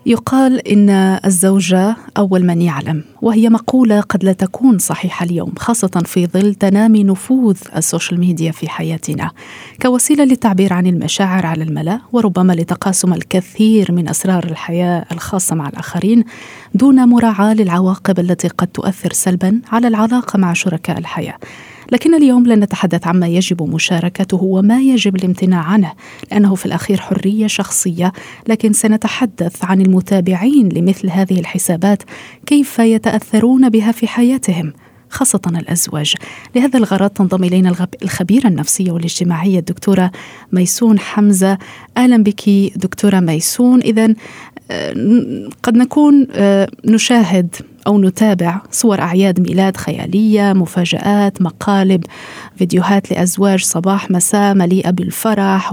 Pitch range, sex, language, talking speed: 180-220 Hz, female, Arabic, 120 wpm